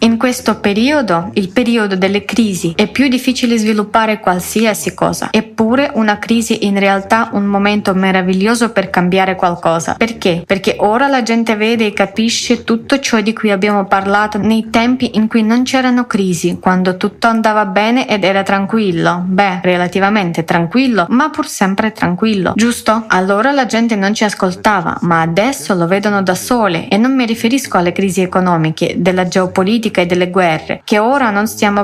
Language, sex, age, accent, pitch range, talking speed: Italian, female, 20-39, native, 190-230 Hz, 170 wpm